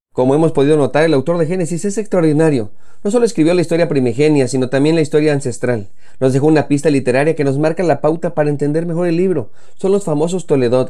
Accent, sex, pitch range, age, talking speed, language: Mexican, male, 125-155 Hz, 40-59, 220 wpm, Spanish